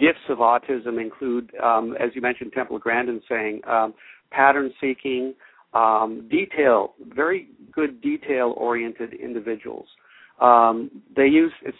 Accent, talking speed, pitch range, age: American, 115 wpm, 120-135 Hz, 50-69